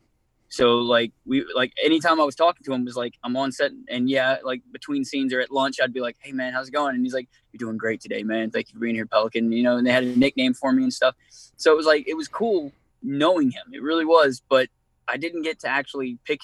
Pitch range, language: 120-140 Hz, English